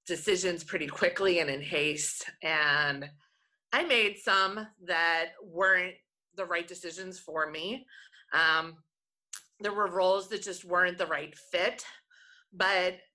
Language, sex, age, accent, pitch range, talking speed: English, female, 30-49, American, 175-215 Hz, 130 wpm